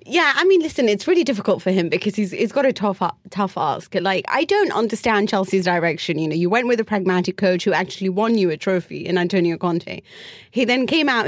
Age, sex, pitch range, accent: 30-49, female, 175-210 Hz, British